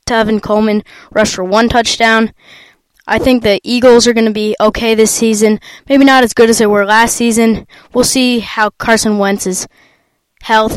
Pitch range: 210-245 Hz